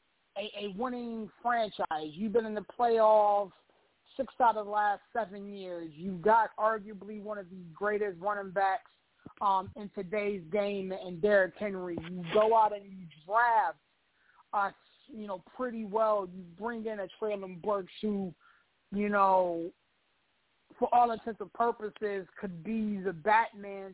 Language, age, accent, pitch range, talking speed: English, 30-49, American, 190-220 Hz, 155 wpm